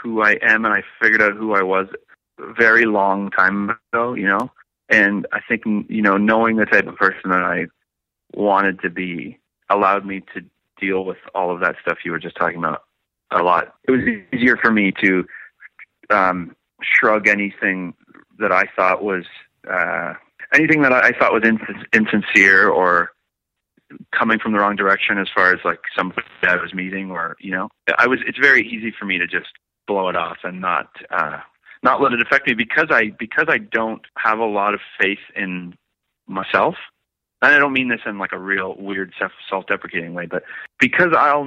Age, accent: 30-49, American